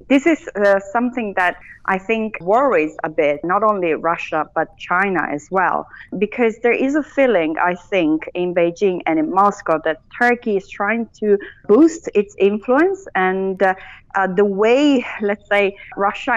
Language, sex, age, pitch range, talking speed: English, female, 30-49, 185-230 Hz, 165 wpm